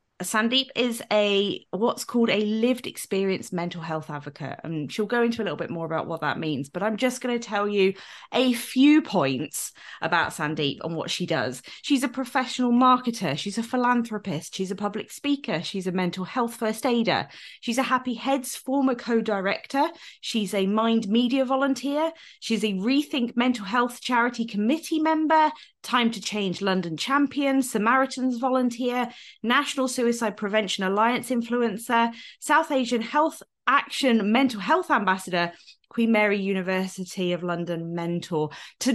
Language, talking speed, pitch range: English, 155 wpm, 185-255 Hz